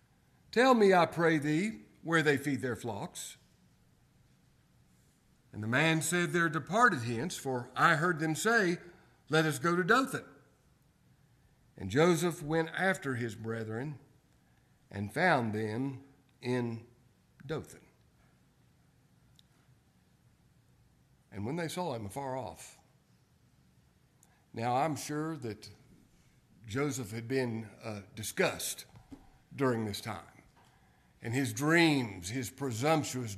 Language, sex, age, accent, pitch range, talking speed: English, male, 50-69, American, 110-155 Hz, 110 wpm